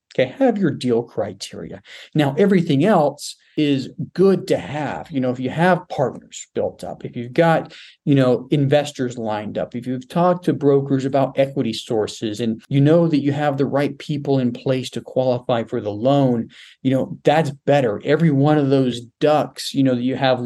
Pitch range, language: 125-150 Hz, English